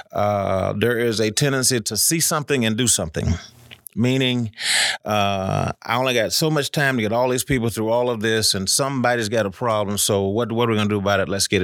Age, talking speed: 30-49, 230 wpm